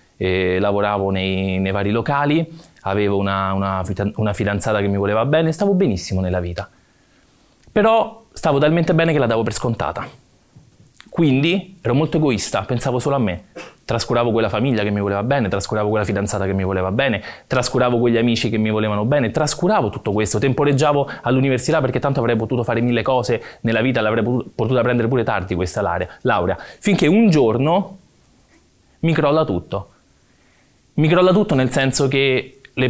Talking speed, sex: 165 wpm, male